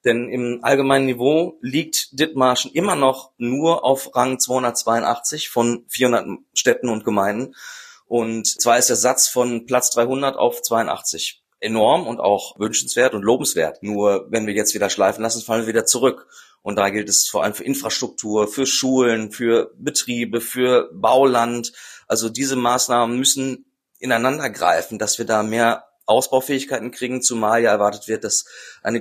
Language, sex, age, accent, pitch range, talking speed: German, male, 30-49, German, 115-130 Hz, 155 wpm